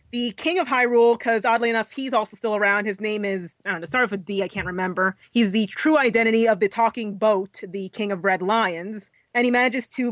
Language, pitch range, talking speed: English, 200-235 Hz, 250 wpm